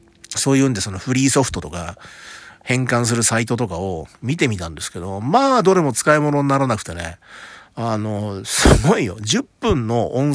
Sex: male